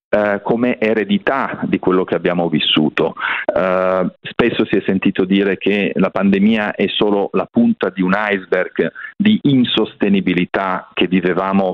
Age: 40-59